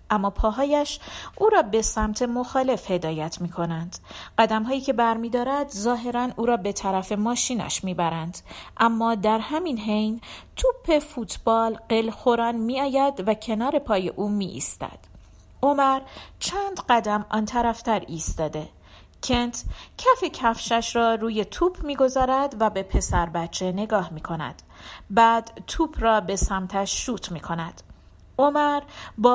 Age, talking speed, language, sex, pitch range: 40-59, 140 wpm, Persian, female, 205-270 Hz